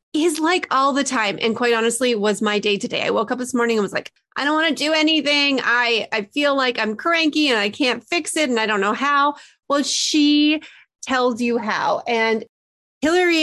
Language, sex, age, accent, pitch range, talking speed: English, female, 30-49, American, 205-255 Hz, 230 wpm